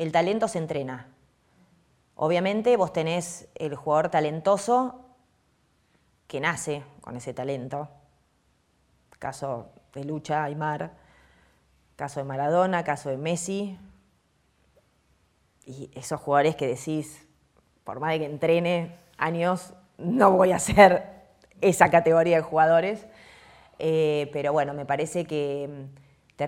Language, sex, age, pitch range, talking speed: Spanish, female, 20-39, 145-190 Hz, 115 wpm